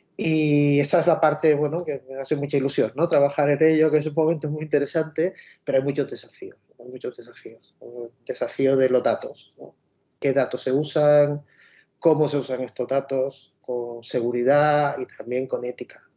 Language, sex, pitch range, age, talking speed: Spanish, male, 130-155 Hz, 30-49, 190 wpm